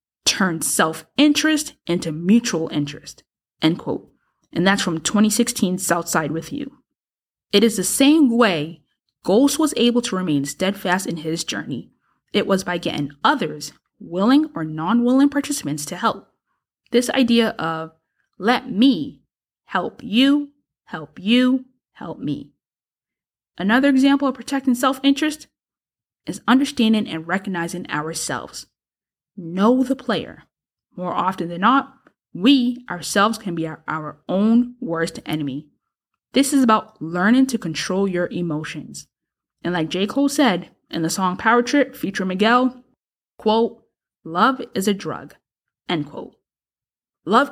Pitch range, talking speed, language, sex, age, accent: 170-255 Hz, 130 wpm, English, female, 20-39, American